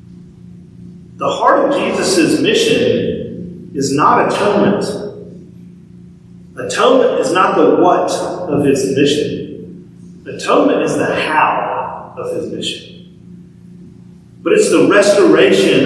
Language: English